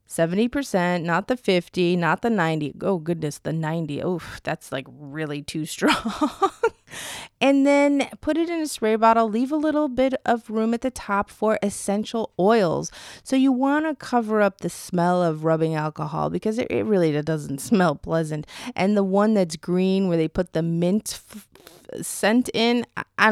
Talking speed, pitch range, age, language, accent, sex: 180 wpm, 165-235 Hz, 30-49, English, American, female